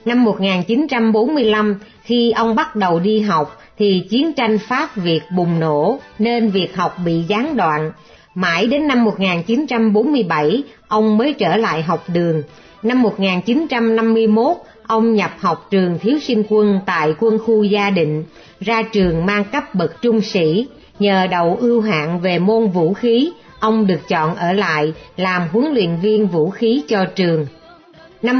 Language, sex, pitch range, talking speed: Vietnamese, female, 180-230 Hz, 155 wpm